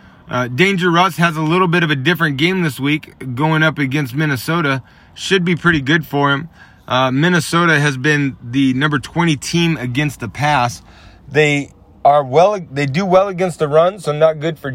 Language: English